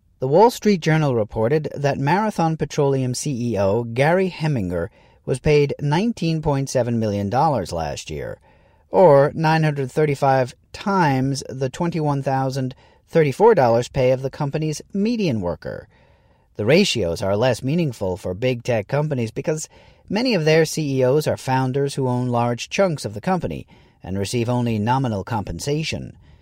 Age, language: 40-59, English